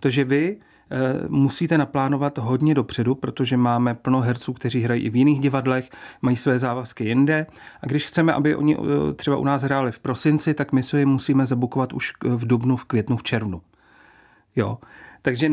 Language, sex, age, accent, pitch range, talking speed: Czech, male, 40-59, native, 125-145 Hz, 185 wpm